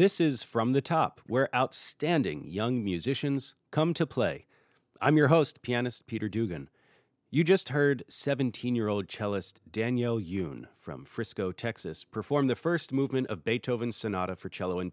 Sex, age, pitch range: male, 40-59, 100-140 Hz